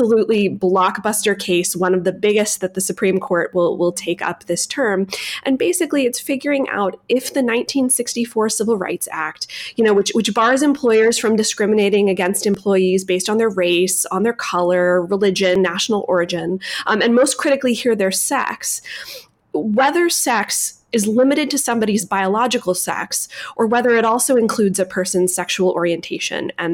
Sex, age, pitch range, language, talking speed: female, 20-39, 180-230 Hz, English, 165 wpm